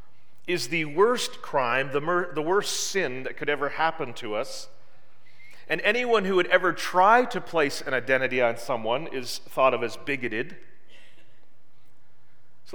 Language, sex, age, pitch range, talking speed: English, male, 40-59, 115-155 Hz, 150 wpm